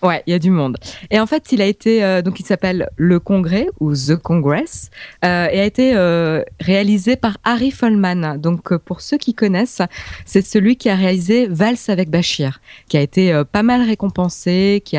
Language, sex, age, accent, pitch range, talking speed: French, female, 20-39, French, 160-210 Hz, 210 wpm